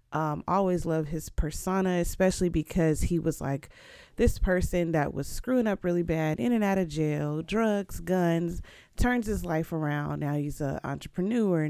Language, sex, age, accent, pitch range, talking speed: English, female, 20-39, American, 155-195 Hz, 170 wpm